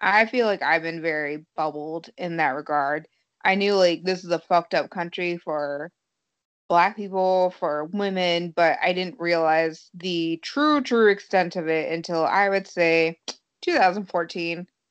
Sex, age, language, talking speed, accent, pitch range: female, 20-39, English, 155 wpm, American, 165-195 Hz